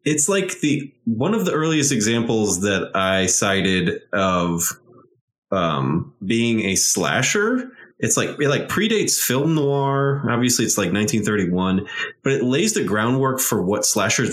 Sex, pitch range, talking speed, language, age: male, 100-135 Hz, 145 wpm, English, 20-39